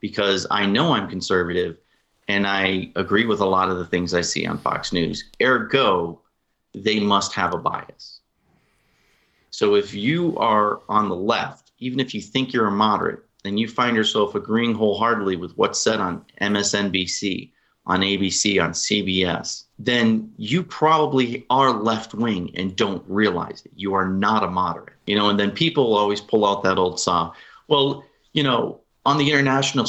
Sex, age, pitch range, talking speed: male, 30-49, 95-120 Hz, 170 wpm